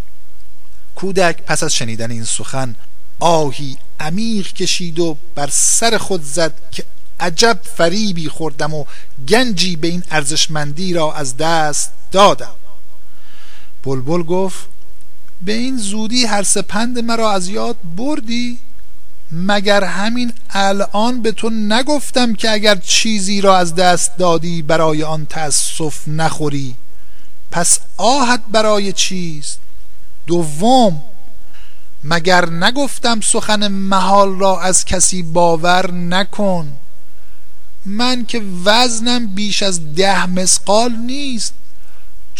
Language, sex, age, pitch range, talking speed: Persian, male, 50-69, 155-210 Hz, 110 wpm